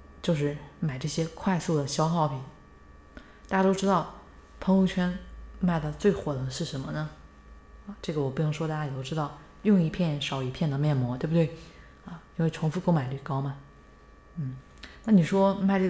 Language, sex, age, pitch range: Chinese, female, 20-39, 130-170 Hz